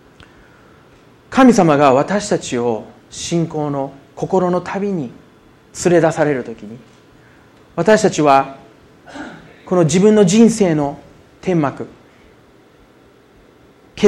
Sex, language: male, Japanese